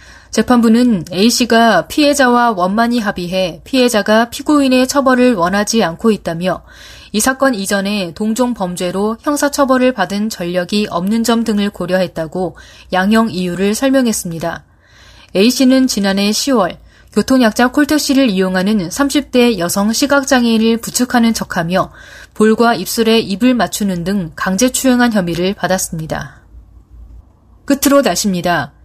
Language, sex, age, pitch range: Korean, female, 20-39, 180-235 Hz